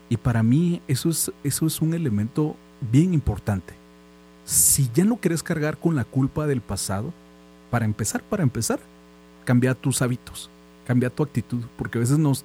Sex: male